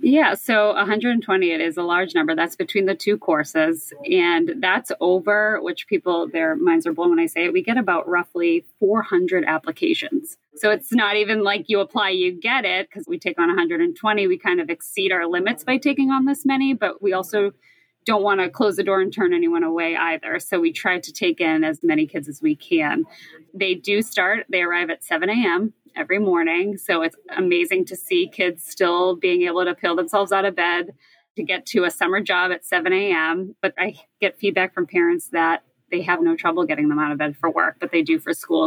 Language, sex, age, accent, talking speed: English, female, 20-39, American, 215 wpm